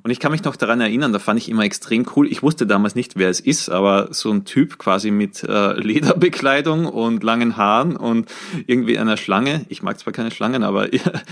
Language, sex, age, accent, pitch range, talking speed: German, male, 30-49, German, 105-150 Hz, 210 wpm